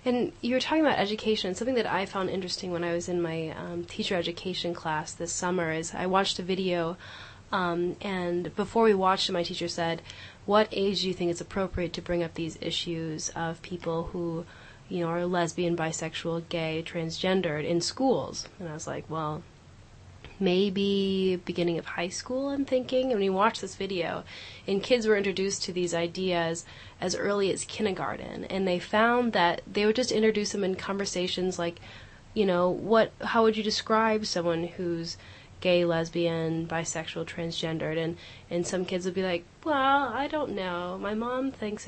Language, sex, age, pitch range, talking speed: English, female, 20-39, 170-205 Hz, 180 wpm